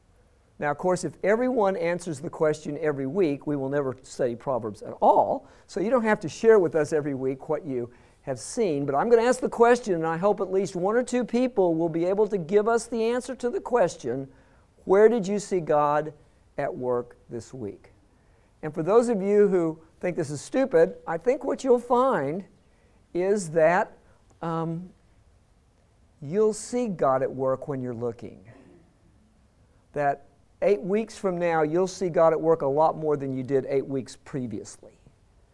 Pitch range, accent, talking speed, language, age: 130-205 Hz, American, 190 wpm, English, 50-69